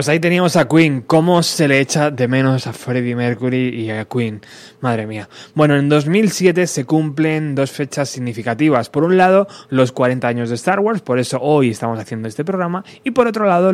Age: 20-39